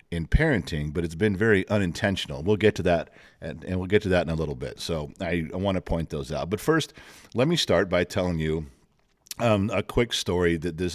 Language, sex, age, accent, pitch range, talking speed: English, male, 50-69, American, 80-105 Hz, 230 wpm